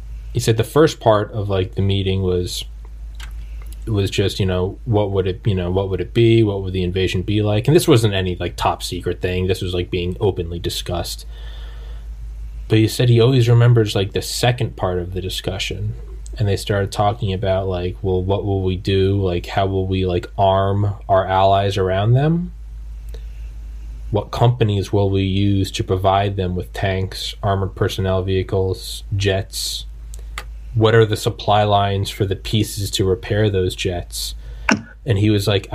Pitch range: 90-110 Hz